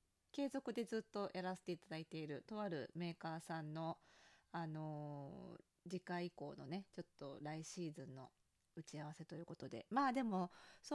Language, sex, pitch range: Japanese, female, 160-210 Hz